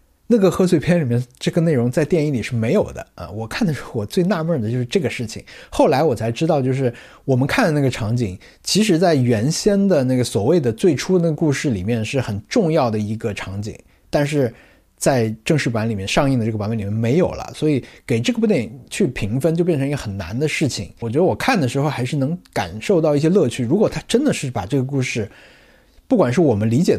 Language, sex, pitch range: Chinese, male, 115-155 Hz